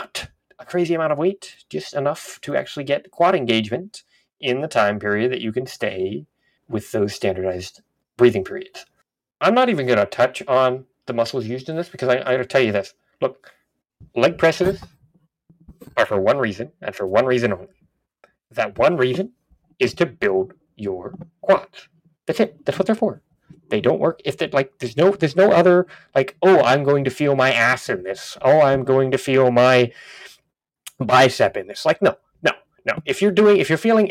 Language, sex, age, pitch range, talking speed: English, male, 30-49, 125-185 Hz, 195 wpm